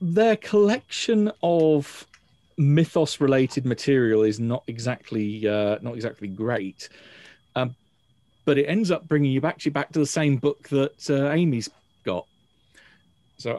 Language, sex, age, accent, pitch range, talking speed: English, male, 40-59, British, 110-150 Hz, 135 wpm